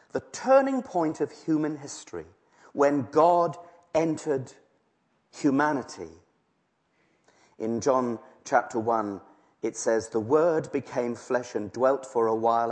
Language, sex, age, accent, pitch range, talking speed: English, male, 40-59, British, 115-155 Hz, 120 wpm